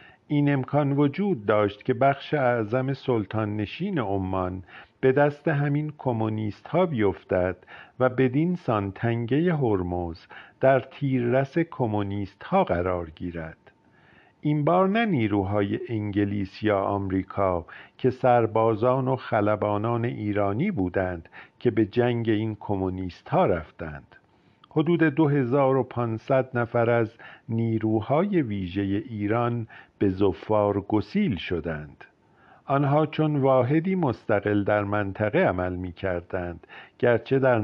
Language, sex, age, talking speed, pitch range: Persian, male, 50-69, 105 wpm, 100-130 Hz